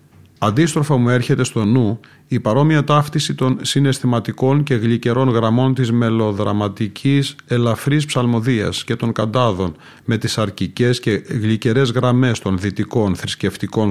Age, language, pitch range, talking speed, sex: 40-59, Greek, 105-125 Hz, 125 wpm, male